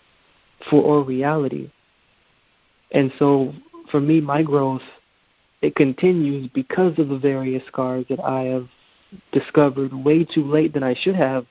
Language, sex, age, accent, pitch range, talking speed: English, male, 30-49, American, 130-150 Hz, 140 wpm